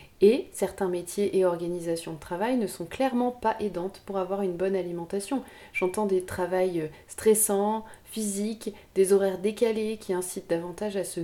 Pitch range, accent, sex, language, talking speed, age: 185-220 Hz, French, female, French, 160 wpm, 30-49